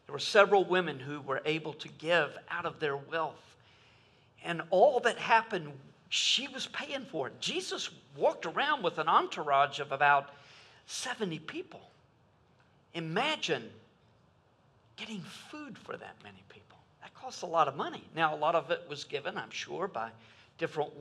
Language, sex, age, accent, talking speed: English, male, 50-69, American, 160 wpm